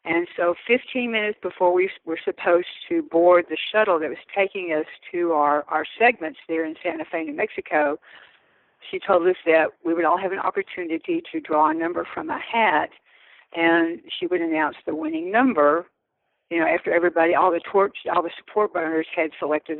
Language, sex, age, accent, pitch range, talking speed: English, female, 60-79, American, 165-190 Hz, 190 wpm